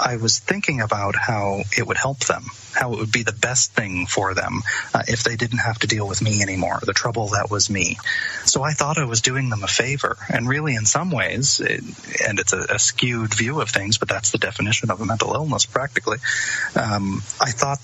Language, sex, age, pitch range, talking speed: English, male, 30-49, 115-155 Hz, 230 wpm